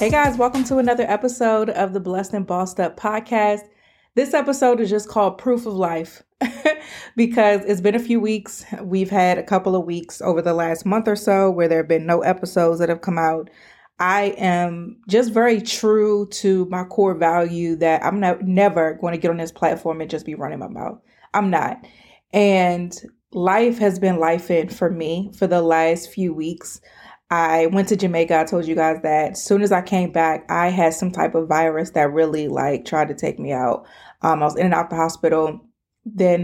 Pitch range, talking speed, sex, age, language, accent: 165-205 Hz, 210 wpm, female, 20-39, English, American